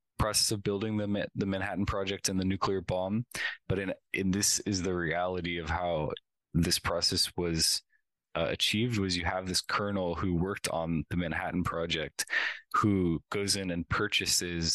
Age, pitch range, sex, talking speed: 20-39, 85-100 Hz, male, 170 wpm